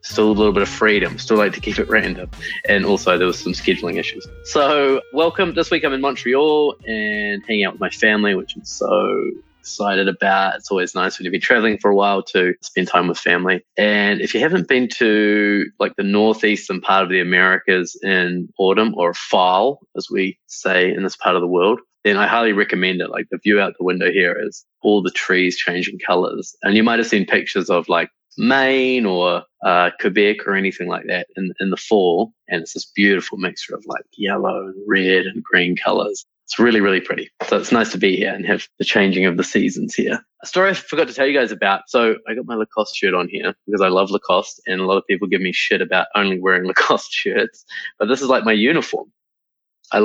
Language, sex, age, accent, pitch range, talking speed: English, male, 20-39, Australian, 95-120 Hz, 225 wpm